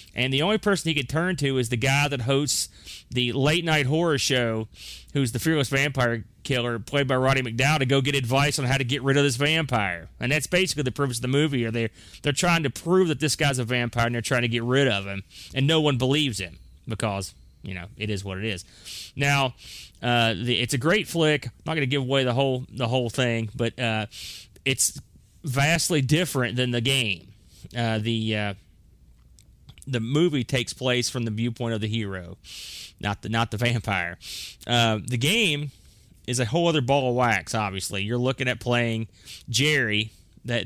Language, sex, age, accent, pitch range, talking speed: English, male, 30-49, American, 105-135 Hz, 200 wpm